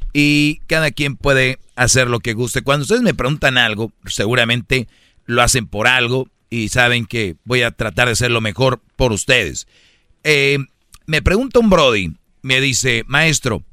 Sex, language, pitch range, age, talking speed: male, Spanish, 115-140 Hz, 50-69, 160 wpm